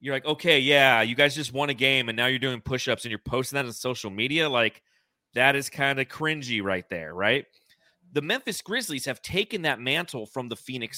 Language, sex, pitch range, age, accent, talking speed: English, male, 115-160 Hz, 30-49, American, 225 wpm